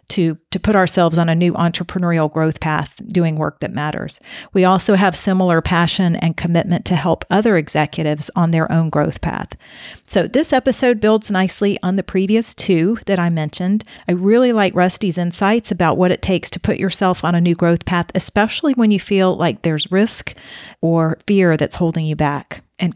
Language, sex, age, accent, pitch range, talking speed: English, female, 40-59, American, 165-200 Hz, 190 wpm